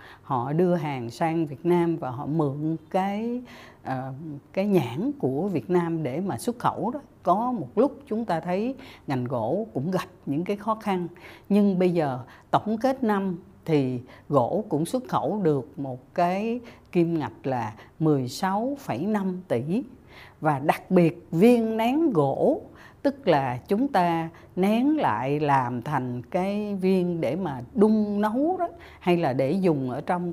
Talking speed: 160 wpm